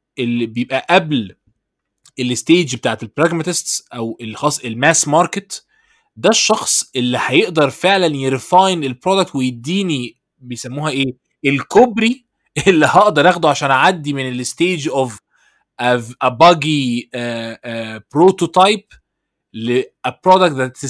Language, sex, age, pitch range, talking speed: Arabic, male, 20-39, 125-180 Hz, 95 wpm